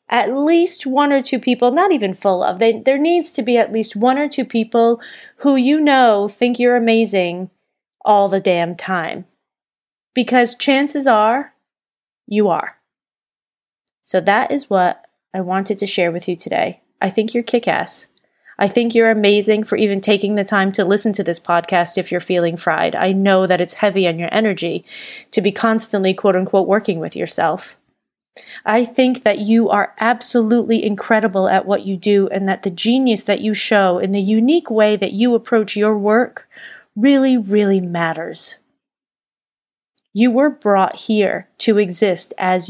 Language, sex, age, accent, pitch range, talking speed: English, female, 30-49, American, 190-235 Hz, 170 wpm